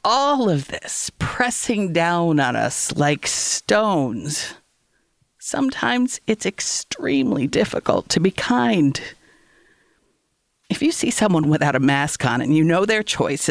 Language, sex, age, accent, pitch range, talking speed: English, female, 50-69, American, 140-225 Hz, 130 wpm